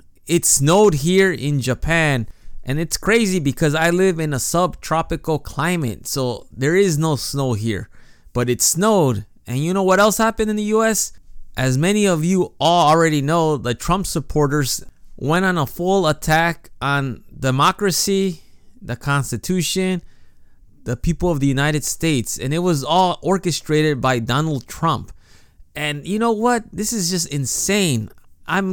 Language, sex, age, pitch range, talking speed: English, male, 20-39, 140-190 Hz, 155 wpm